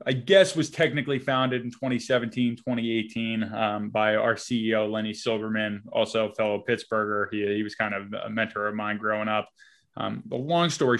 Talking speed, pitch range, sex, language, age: 180 wpm, 110-125 Hz, male, English, 20-39